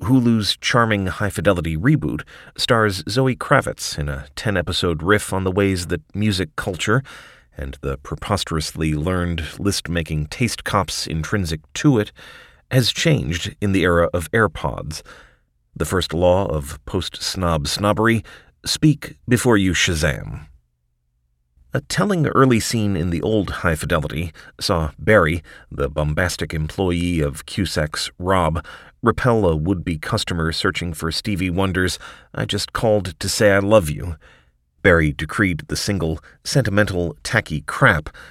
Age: 30-49